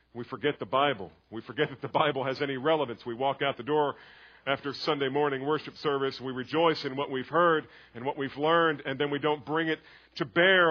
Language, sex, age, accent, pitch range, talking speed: English, male, 40-59, American, 120-165 Hz, 225 wpm